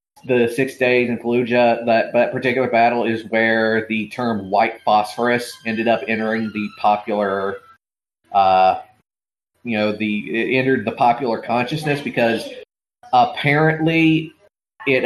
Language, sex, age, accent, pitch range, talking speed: English, male, 30-49, American, 105-125 Hz, 130 wpm